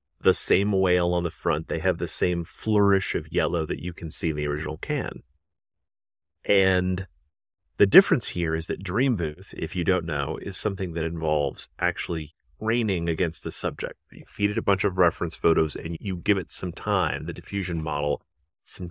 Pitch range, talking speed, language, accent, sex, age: 80-95 Hz, 190 wpm, English, American, male, 30-49